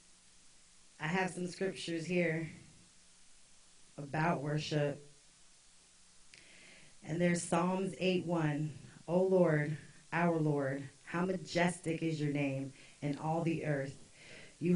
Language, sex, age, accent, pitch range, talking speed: English, female, 30-49, American, 145-175 Hz, 105 wpm